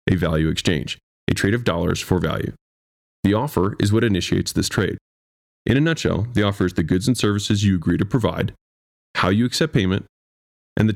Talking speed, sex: 195 wpm, male